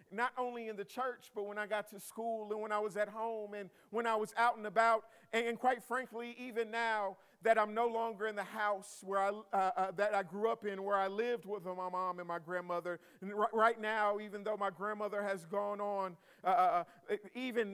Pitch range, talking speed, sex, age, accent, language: 200-235 Hz, 230 wpm, male, 50-69, American, English